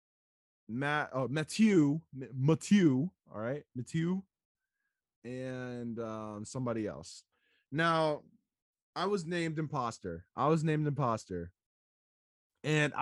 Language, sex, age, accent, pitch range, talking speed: English, male, 20-39, American, 125-185 Hz, 95 wpm